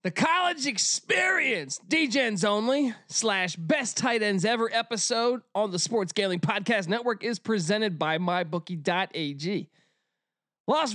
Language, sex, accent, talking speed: English, male, American, 120 wpm